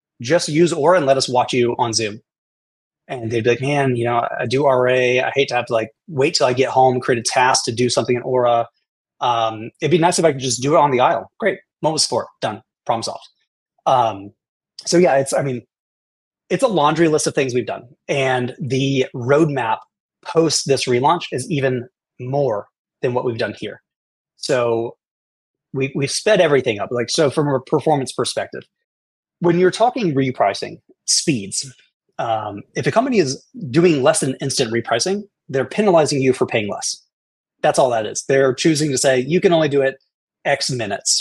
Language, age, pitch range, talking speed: English, 30-49, 125-155 Hz, 195 wpm